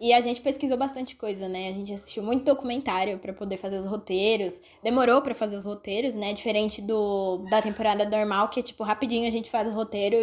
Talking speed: 215 wpm